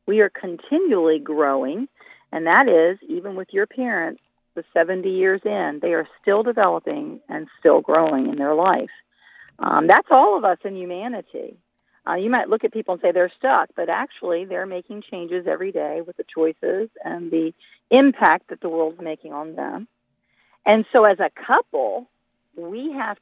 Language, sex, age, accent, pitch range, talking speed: English, female, 40-59, American, 170-255 Hz, 175 wpm